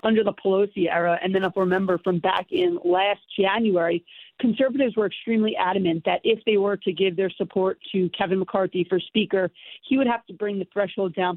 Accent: American